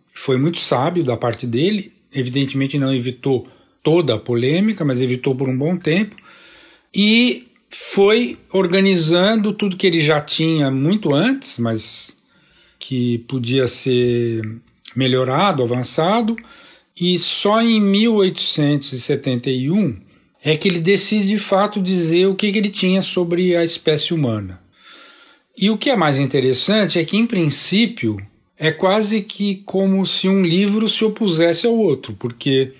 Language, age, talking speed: Portuguese, 60-79, 140 wpm